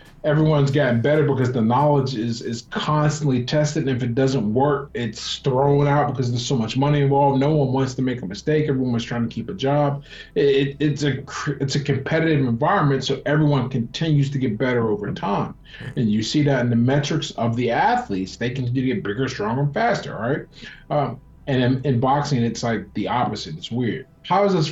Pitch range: 125-150 Hz